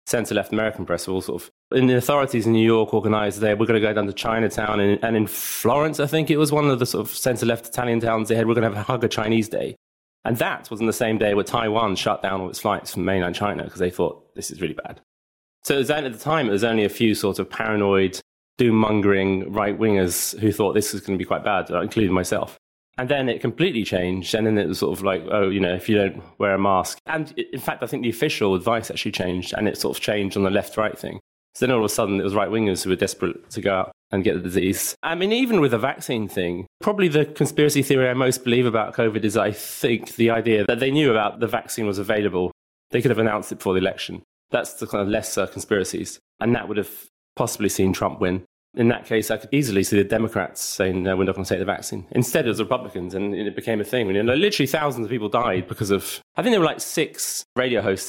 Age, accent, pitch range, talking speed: 20-39, British, 100-120 Hz, 260 wpm